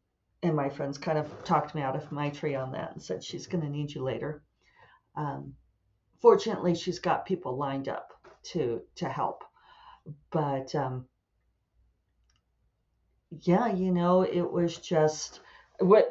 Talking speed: 150 wpm